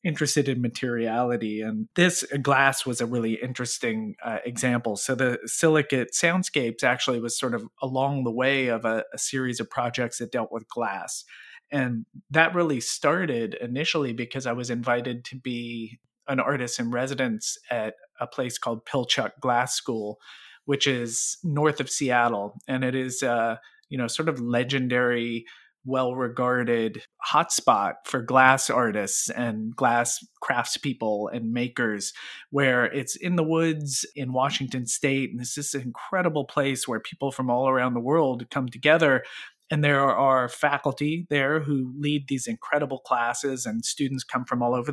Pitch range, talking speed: 120-145 Hz, 160 wpm